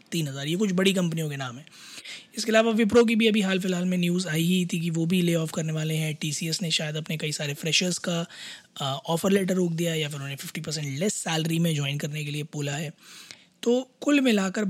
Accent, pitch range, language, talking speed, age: native, 160-195 Hz, Hindi, 240 wpm, 20-39